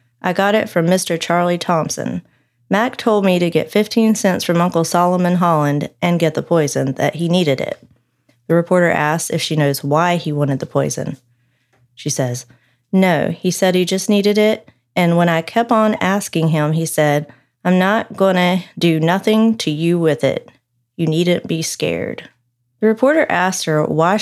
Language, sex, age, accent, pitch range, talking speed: English, female, 30-49, American, 150-200 Hz, 180 wpm